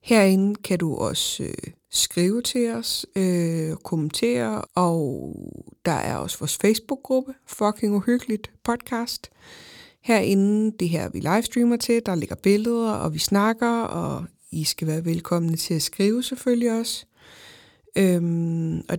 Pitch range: 175-225 Hz